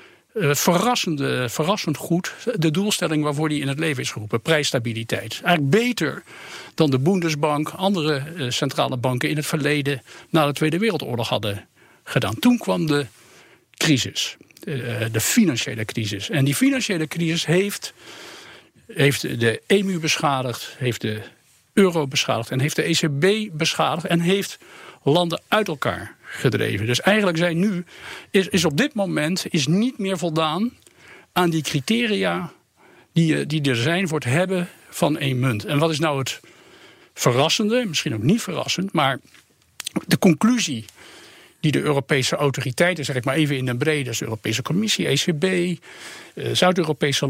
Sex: male